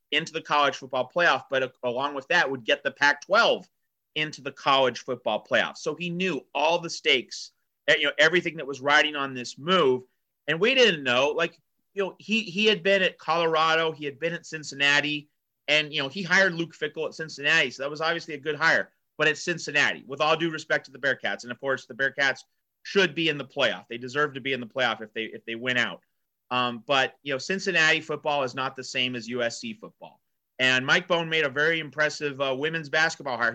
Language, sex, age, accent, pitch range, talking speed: English, male, 40-59, American, 135-175 Hz, 225 wpm